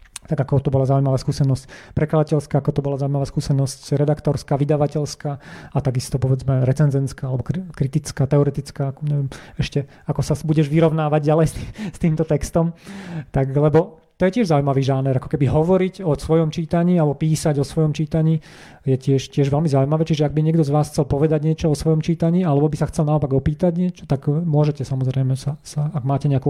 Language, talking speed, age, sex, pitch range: Slovak, 190 wpm, 30-49, male, 135-155 Hz